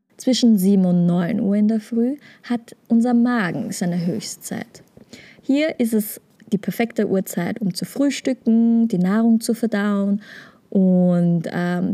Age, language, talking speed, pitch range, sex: 20-39, German, 140 wpm, 190-225 Hz, female